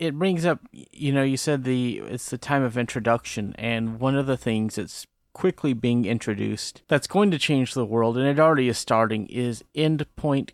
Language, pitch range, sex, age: English, 115-140 Hz, male, 30-49